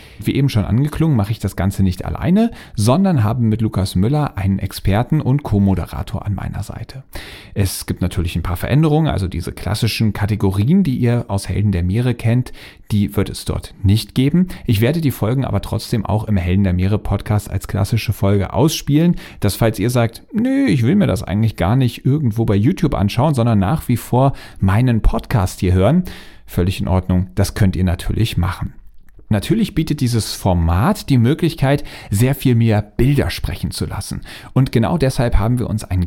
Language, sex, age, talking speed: German, male, 40-59, 190 wpm